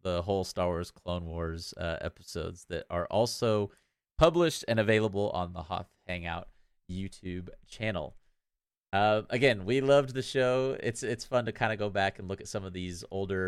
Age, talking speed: 30-49, 185 wpm